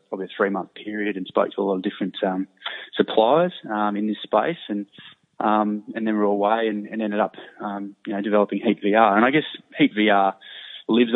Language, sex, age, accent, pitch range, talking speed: English, male, 20-39, Australian, 100-110 Hz, 215 wpm